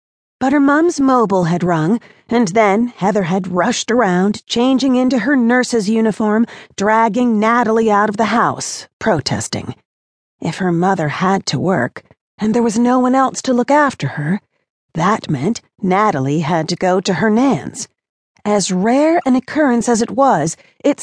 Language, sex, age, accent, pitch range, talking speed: English, female, 40-59, American, 170-230 Hz, 165 wpm